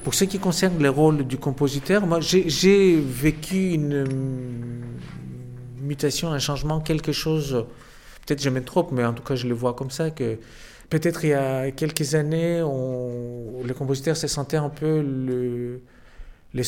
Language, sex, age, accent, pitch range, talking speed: French, male, 40-59, French, 115-145 Hz, 165 wpm